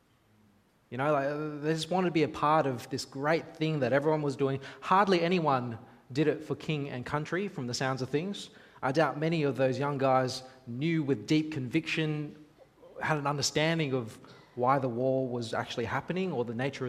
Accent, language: Australian, English